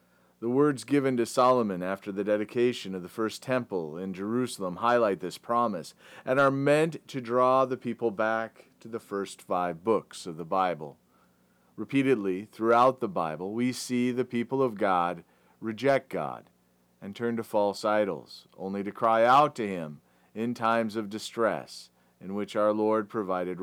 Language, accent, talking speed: English, American, 165 wpm